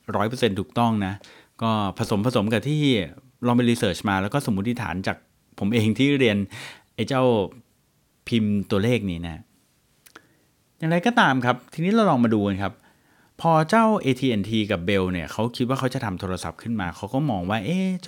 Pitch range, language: 100-135 Hz, Thai